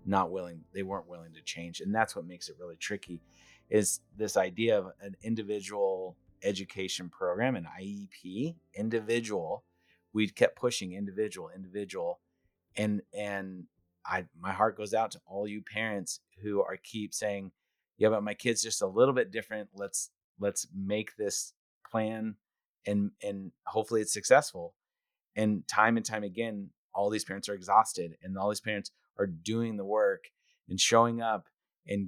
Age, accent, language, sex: 30-49, American, English, male